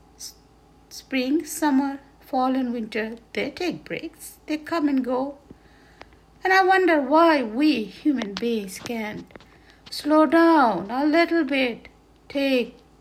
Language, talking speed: English, 120 wpm